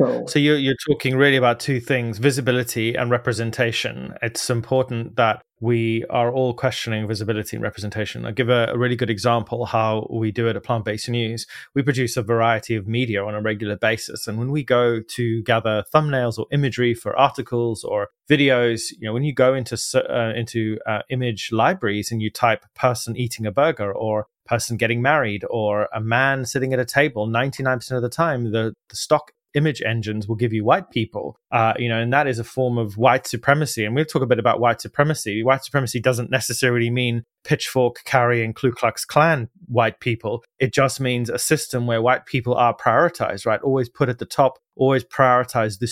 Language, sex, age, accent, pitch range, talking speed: English, male, 30-49, British, 115-130 Hz, 195 wpm